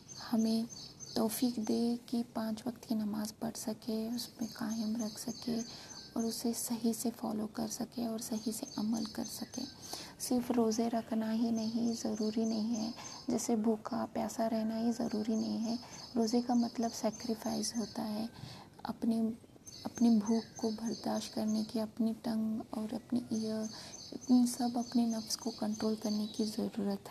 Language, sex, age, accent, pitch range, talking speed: Hindi, female, 20-39, native, 220-235 Hz, 155 wpm